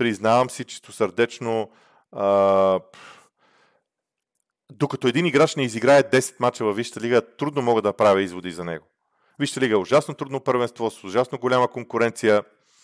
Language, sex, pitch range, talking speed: Bulgarian, male, 105-130 Hz, 150 wpm